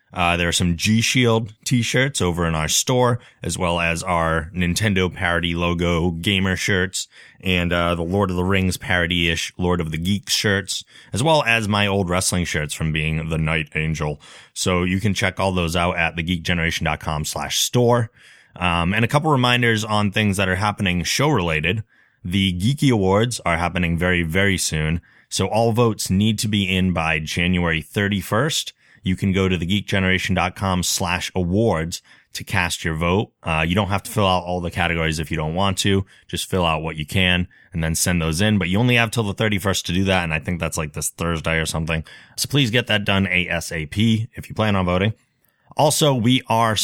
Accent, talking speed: American, 195 wpm